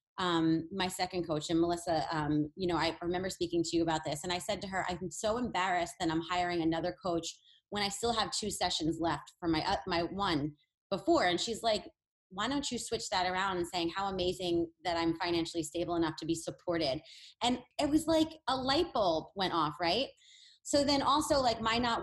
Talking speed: 215 wpm